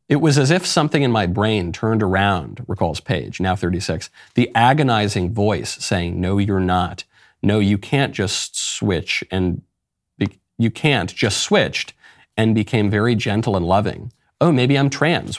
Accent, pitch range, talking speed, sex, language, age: American, 90-110 Hz, 165 wpm, male, English, 40-59